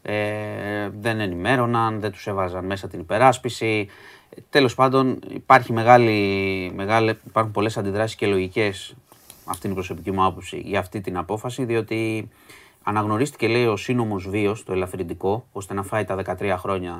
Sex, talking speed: male, 145 wpm